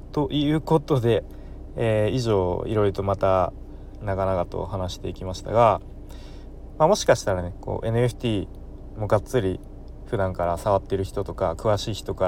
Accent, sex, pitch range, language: native, male, 95-125 Hz, Japanese